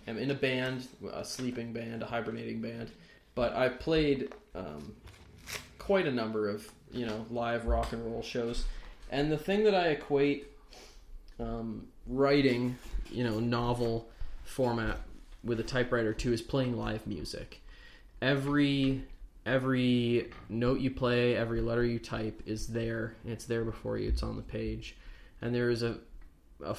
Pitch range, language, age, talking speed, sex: 110-125 Hz, English, 20-39, 155 wpm, male